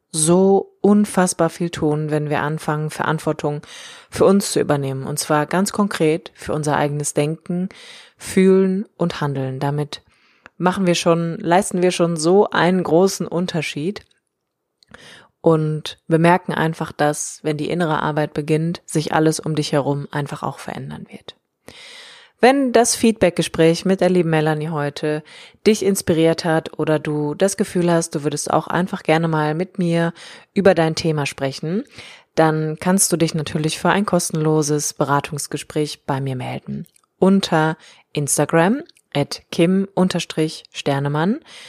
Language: German